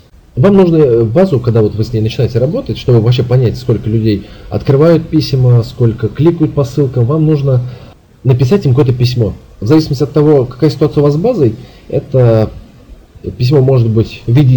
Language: Russian